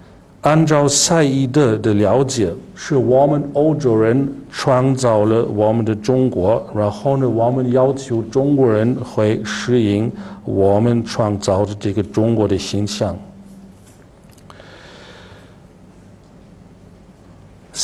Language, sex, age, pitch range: Chinese, male, 50-69, 110-140 Hz